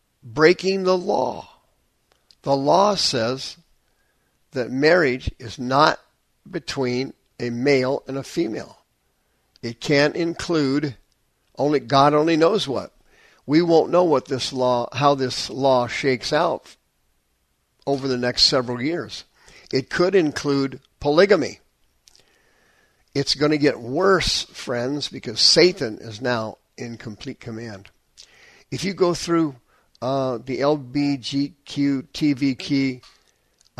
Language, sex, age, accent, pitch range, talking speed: English, male, 50-69, American, 120-150 Hz, 115 wpm